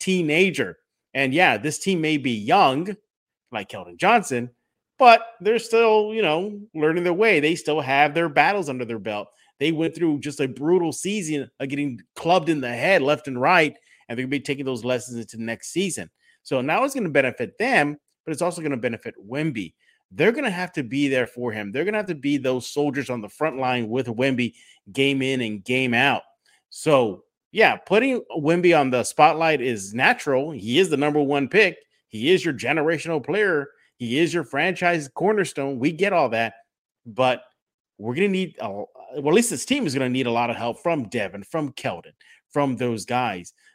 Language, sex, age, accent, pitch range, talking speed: English, male, 30-49, American, 125-175 Hz, 200 wpm